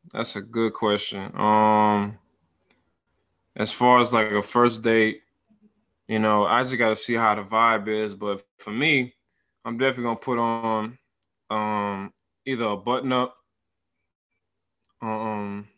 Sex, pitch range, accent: male, 100-120 Hz, American